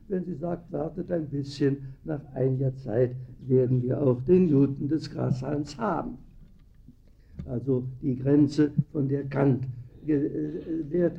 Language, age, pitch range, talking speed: German, 60-79, 125-165 Hz, 130 wpm